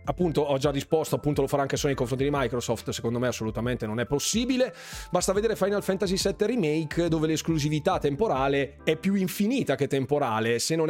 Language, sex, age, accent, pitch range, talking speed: Italian, male, 30-49, native, 130-170 Hz, 195 wpm